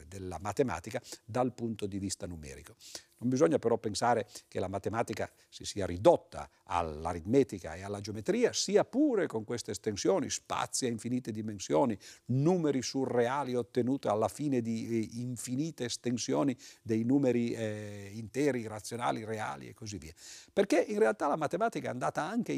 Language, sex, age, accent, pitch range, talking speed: Italian, male, 50-69, native, 100-145 Hz, 145 wpm